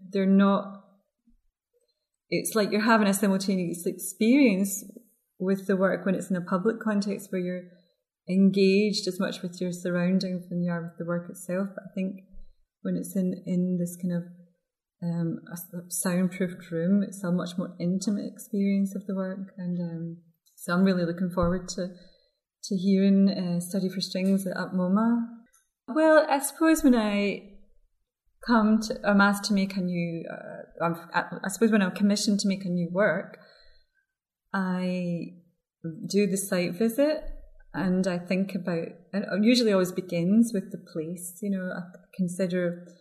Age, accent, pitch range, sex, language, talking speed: 30-49, British, 180-215 Hz, female, English, 165 wpm